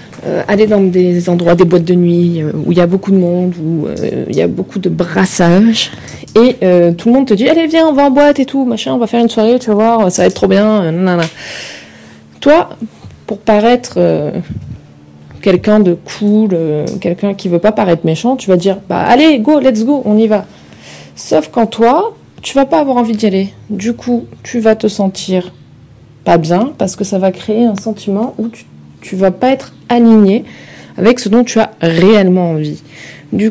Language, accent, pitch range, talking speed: French, French, 170-230 Hz, 215 wpm